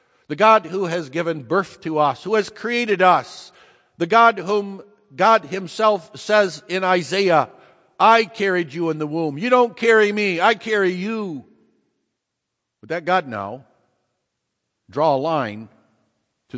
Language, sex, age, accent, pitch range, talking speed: English, male, 60-79, American, 120-195 Hz, 150 wpm